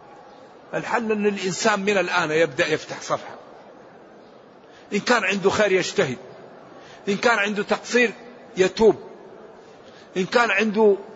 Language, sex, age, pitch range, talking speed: Arabic, male, 50-69, 180-225 Hz, 115 wpm